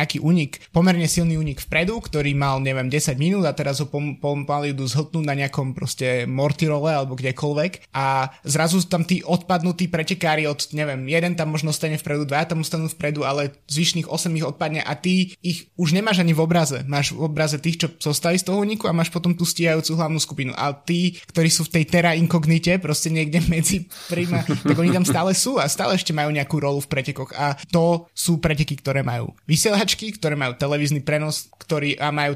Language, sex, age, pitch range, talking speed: Slovak, male, 20-39, 145-170 Hz, 200 wpm